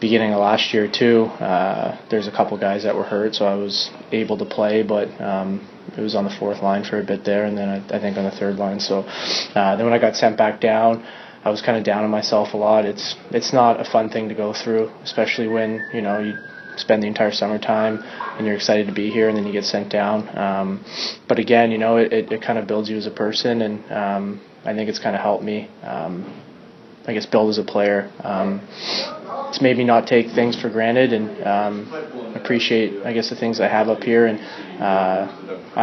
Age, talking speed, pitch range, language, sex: 20-39, 230 wpm, 105-115 Hz, English, male